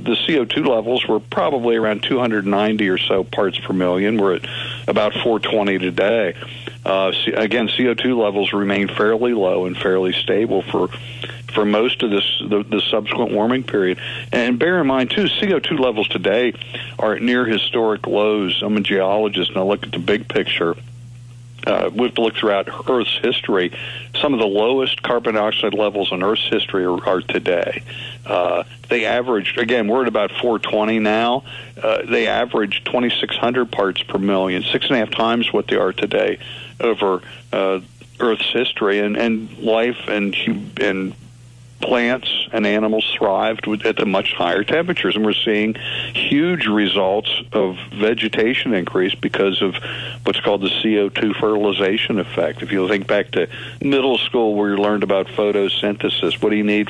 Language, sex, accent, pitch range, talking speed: English, male, American, 100-120 Hz, 160 wpm